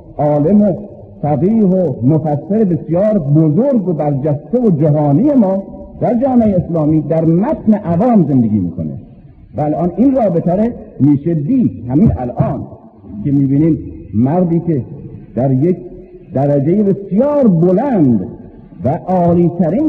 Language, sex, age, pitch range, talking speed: Persian, male, 50-69, 135-195 Hz, 120 wpm